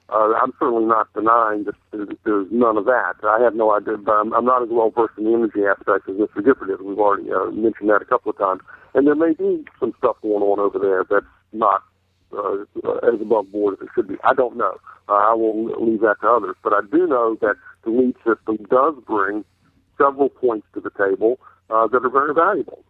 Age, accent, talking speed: 60-79, American, 230 wpm